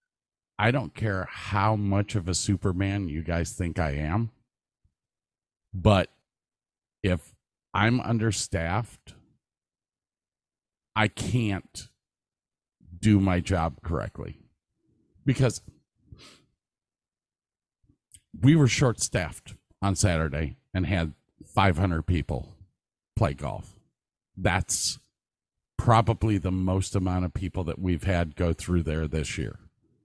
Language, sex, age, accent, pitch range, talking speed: English, male, 50-69, American, 90-115 Hz, 100 wpm